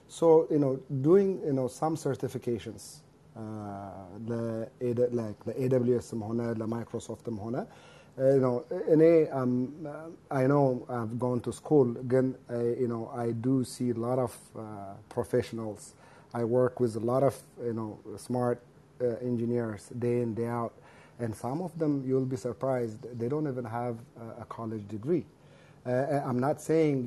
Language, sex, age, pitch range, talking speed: Amharic, male, 30-49, 115-140 Hz, 165 wpm